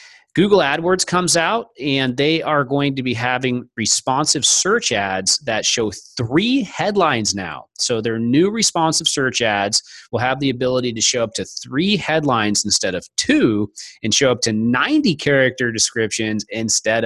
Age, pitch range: 30-49, 110-150 Hz